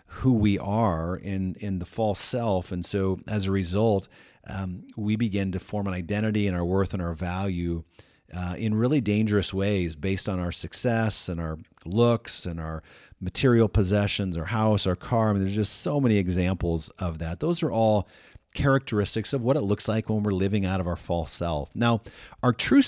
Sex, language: male, English